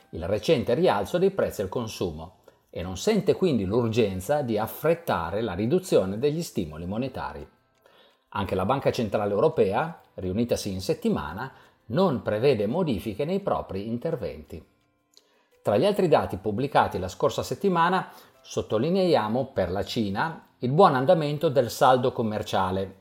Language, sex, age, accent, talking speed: Italian, male, 50-69, native, 135 wpm